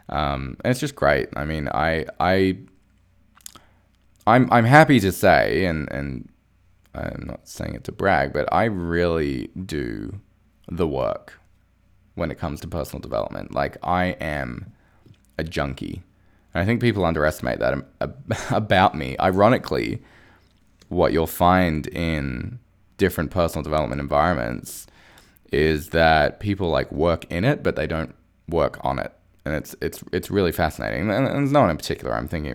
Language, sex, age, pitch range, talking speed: English, male, 20-39, 75-95 Hz, 155 wpm